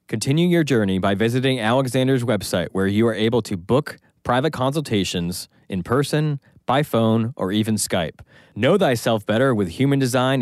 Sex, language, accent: male, English, American